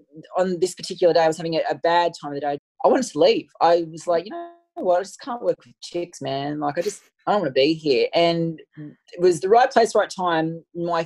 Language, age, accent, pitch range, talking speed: English, 20-39, Australian, 160-200 Hz, 260 wpm